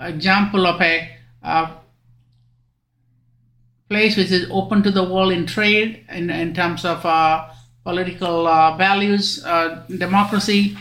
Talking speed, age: 130 wpm, 50-69